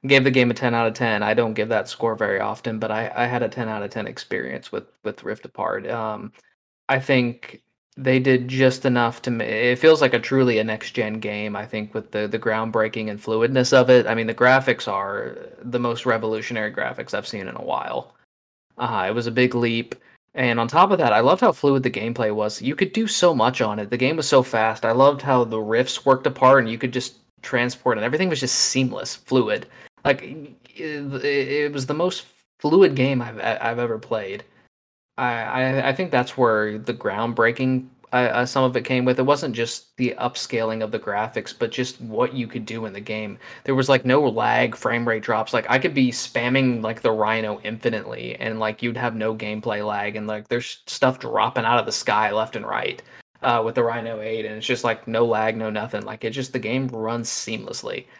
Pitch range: 110-130 Hz